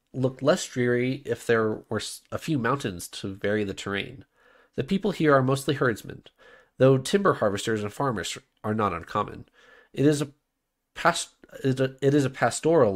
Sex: male